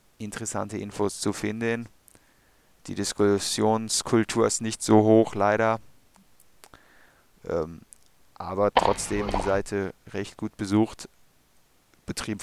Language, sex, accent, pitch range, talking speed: German, male, German, 100-115 Hz, 95 wpm